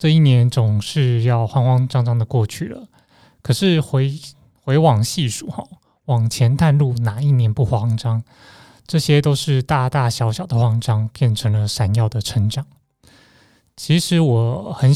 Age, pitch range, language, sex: 20-39, 110-135 Hz, Chinese, male